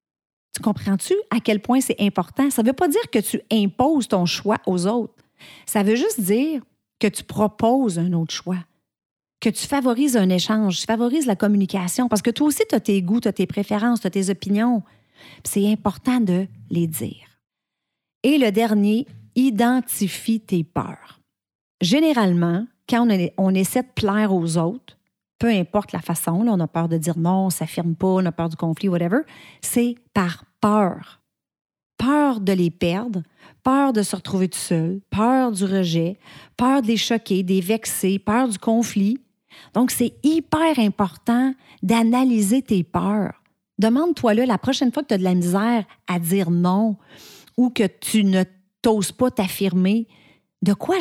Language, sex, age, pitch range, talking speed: French, female, 40-59, 185-240 Hz, 175 wpm